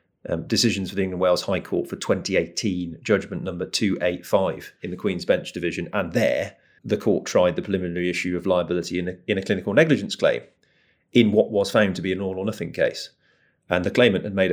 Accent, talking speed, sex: British, 215 wpm, male